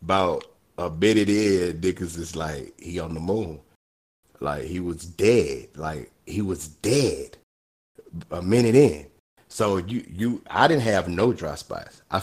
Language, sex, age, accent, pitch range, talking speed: English, male, 30-49, American, 85-110 Hz, 155 wpm